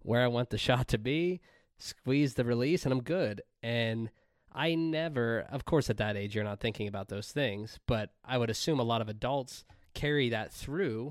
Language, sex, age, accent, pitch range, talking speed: English, male, 20-39, American, 105-125 Hz, 205 wpm